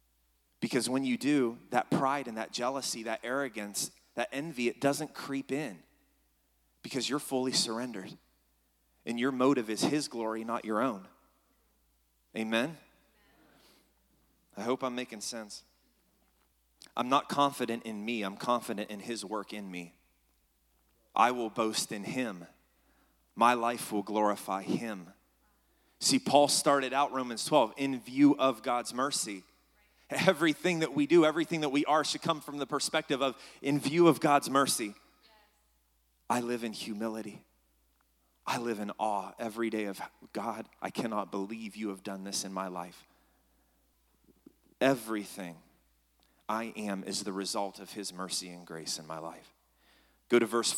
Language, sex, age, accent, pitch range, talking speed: English, male, 30-49, American, 100-140 Hz, 150 wpm